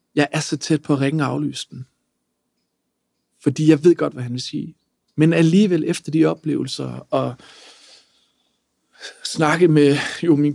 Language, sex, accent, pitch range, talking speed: Danish, male, native, 140-165 Hz, 155 wpm